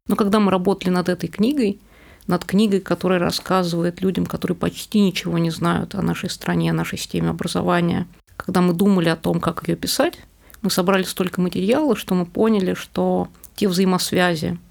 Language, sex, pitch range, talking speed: Russian, female, 170-200 Hz, 170 wpm